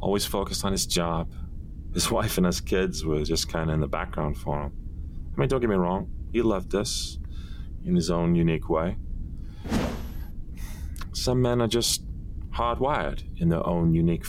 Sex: male